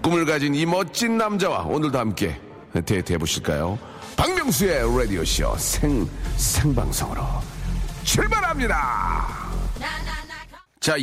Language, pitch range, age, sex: Korean, 100-150 Hz, 40-59, male